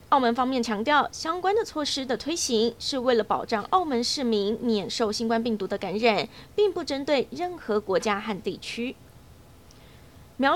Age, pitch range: 20-39, 220-280 Hz